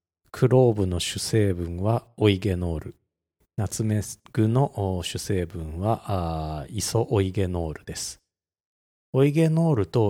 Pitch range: 90-130 Hz